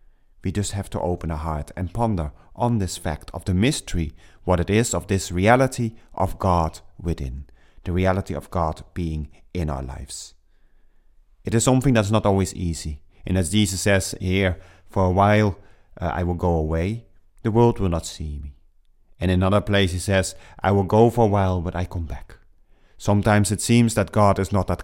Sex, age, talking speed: male, 30-49, 200 wpm